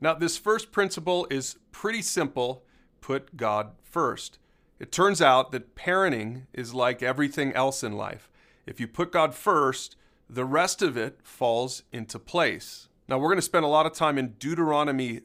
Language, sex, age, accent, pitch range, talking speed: English, male, 40-59, American, 120-160 Hz, 175 wpm